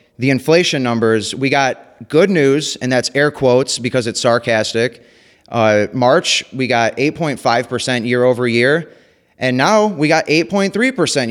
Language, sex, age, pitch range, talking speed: English, male, 30-49, 115-140 Hz, 145 wpm